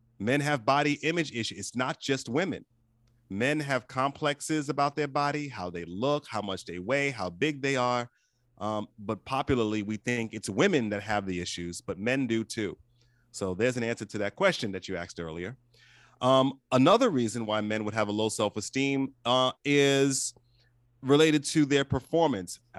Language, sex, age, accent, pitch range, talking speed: English, male, 30-49, American, 110-135 Hz, 180 wpm